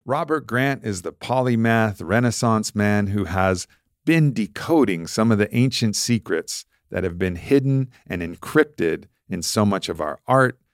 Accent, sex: American, male